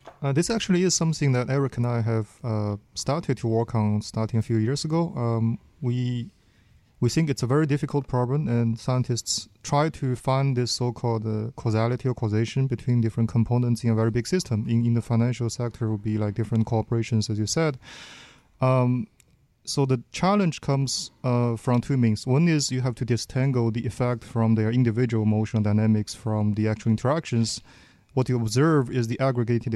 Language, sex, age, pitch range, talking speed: English, male, 30-49, 110-130 Hz, 190 wpm